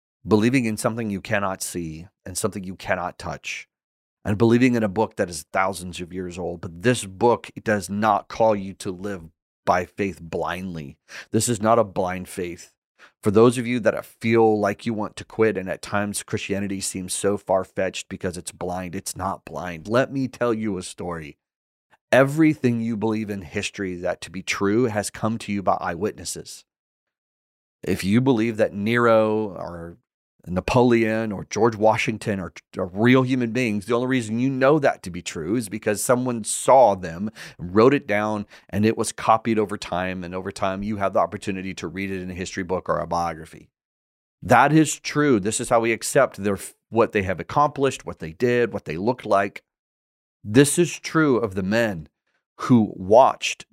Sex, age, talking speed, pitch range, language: male, 30-49, 190 wpm, 90-115 Hz, English